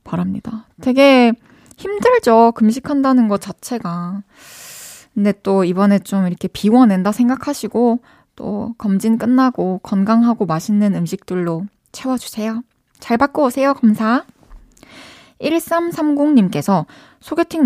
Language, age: Korean, 20-39